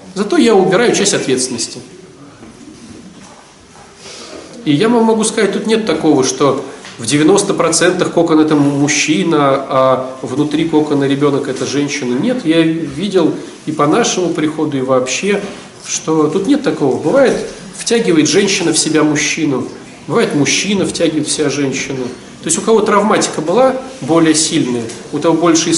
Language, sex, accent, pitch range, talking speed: Russian, male, native, 150-220 Hz, 145 wpm